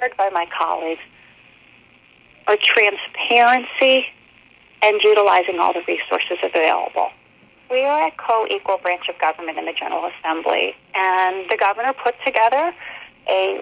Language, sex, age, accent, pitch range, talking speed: English, female, 40-59, American, 210-285 Hz, 125 wpm